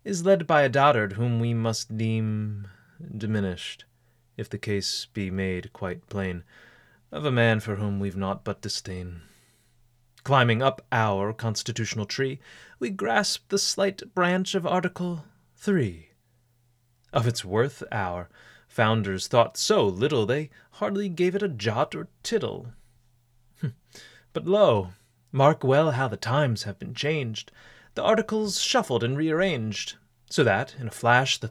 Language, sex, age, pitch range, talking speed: English, male, 30-49, 105-140 Hz, 145 wpm